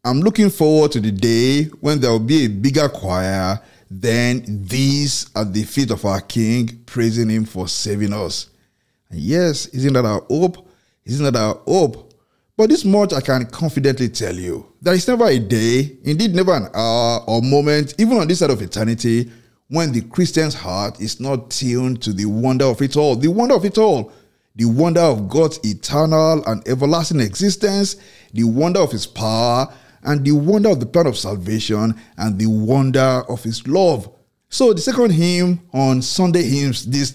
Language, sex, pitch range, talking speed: English, male, 110-155 Hz, 185 wpm